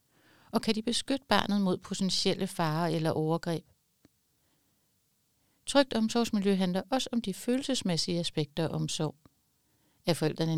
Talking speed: 125 wpm